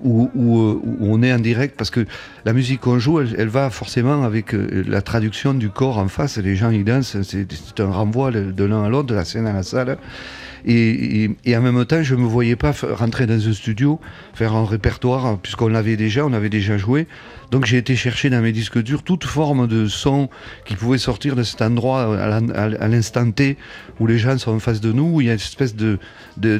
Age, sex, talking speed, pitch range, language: 40-59, male, 240 wpm, 110-130 Hz, French